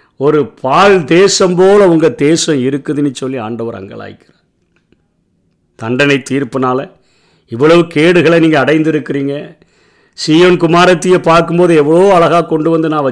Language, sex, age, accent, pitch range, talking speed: Tamil, male, 50-69, native, 140-175 Hz, 110 wpm